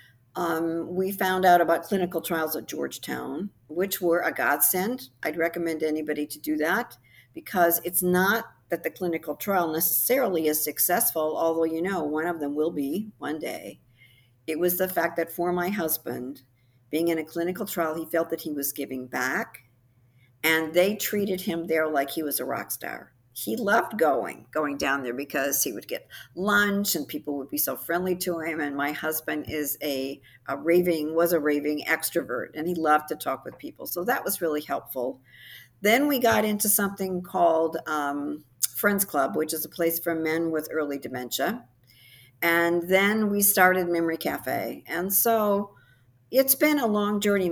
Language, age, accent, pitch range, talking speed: English, 50-69, American, 145-185 Hz, 180 wpm